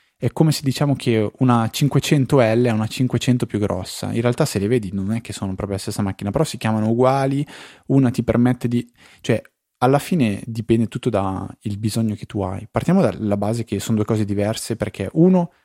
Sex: male